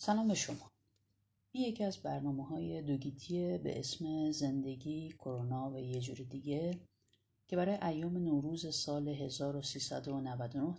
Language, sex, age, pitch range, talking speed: Persian, female, 30-49, 115-170 Hz, 130 wpm